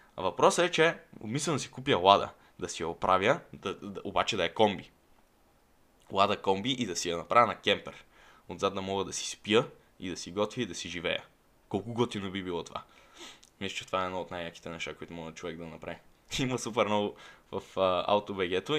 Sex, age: male, 10-29